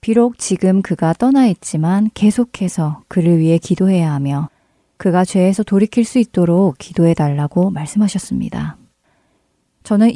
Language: Korean